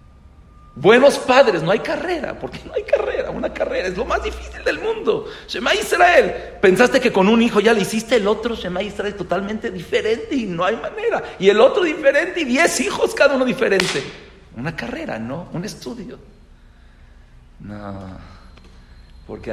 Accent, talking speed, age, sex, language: Mexican, 170 wpm, 50-69, male, English